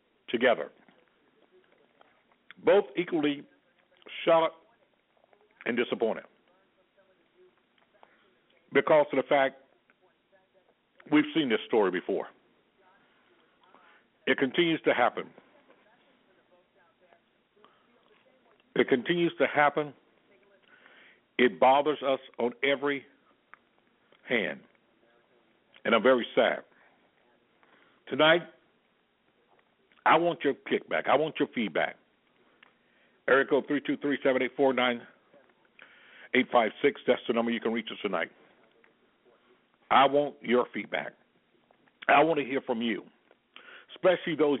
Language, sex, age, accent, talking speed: English, male, 60-79, American, 100 wpm